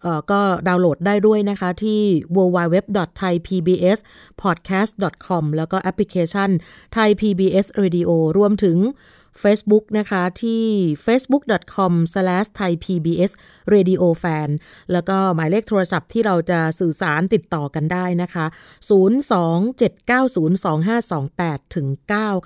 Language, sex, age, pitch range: Thai, female, 30-49, 170-210 Hz